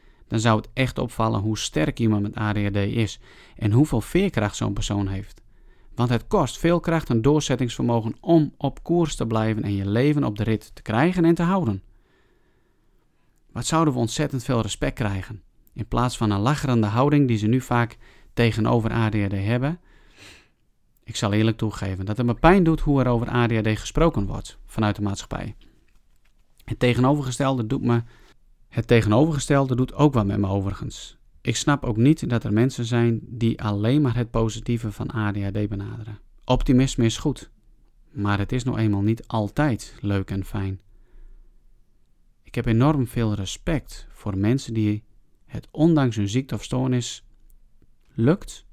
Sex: male